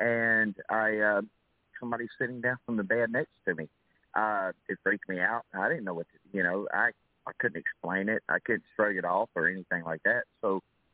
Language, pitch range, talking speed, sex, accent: English, 95-115 Hz, 215 wpm, male, American